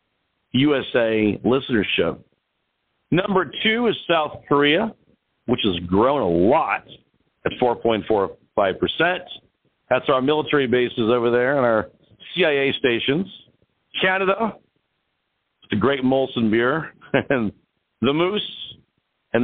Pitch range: 115-165 Hz